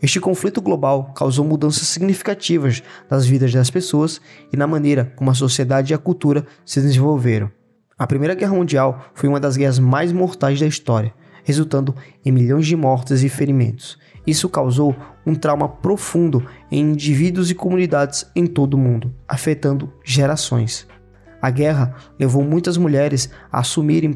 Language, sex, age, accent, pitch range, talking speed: Portuguese, male, 20-39, Brazilian, 135-160 Hz, 155 wpm